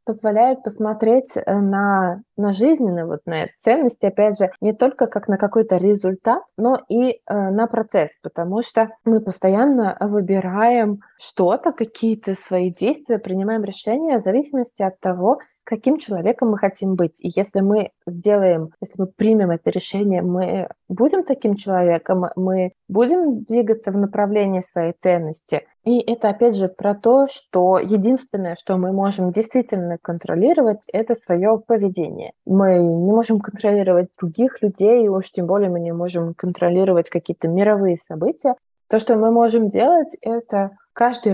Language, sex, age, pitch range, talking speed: Russian, female, 20-39, 185-230 Hz, 140 wpm